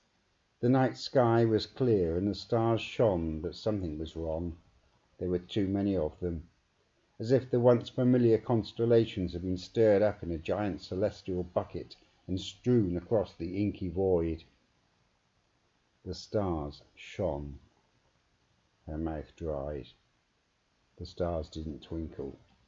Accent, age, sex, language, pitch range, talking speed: British, 50-69, male, English, 85-110 Hz, 130 wpm